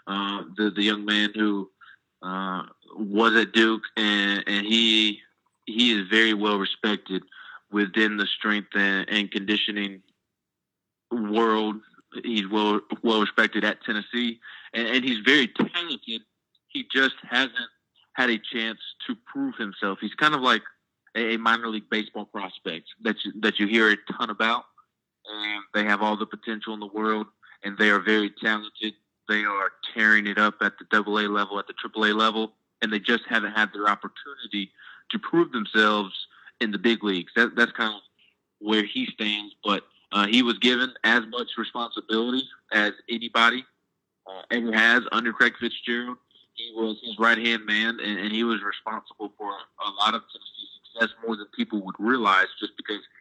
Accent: American